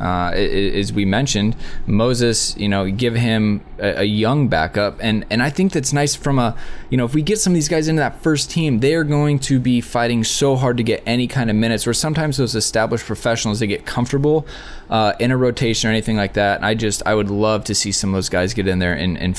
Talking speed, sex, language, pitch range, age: 250 wpm, male, English, 95-125 Hz, 20-39